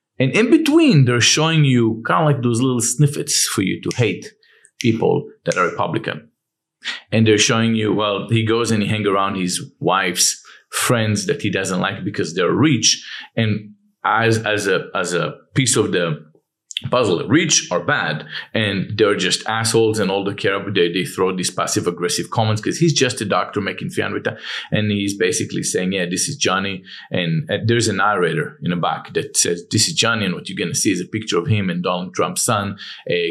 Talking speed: 205 wpm